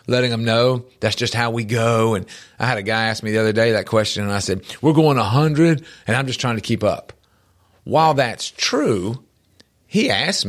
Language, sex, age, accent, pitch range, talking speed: English, male, 40-59, American, 115-145 Hz, 225 wpm